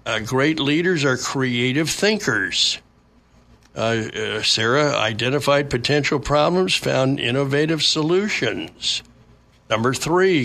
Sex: male